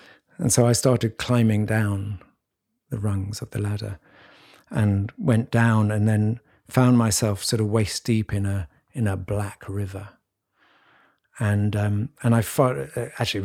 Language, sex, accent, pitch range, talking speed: English, male, British, 105-120 Hz, 150 wpm